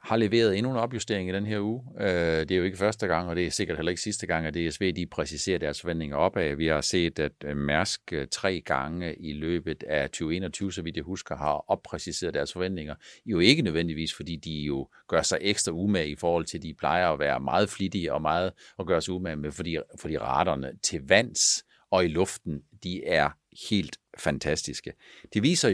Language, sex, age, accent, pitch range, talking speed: Danish, male, 50-69, native, 85-115 Hz, 205 wpm